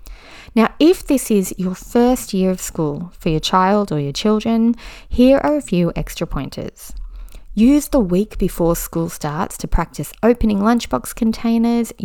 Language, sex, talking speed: English, female, 160 wpm